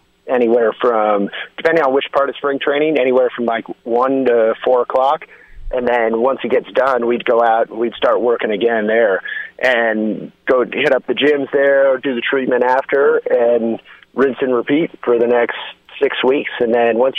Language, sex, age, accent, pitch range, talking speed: English, male, 30-49, American, 115-145 Hz, 190 wpm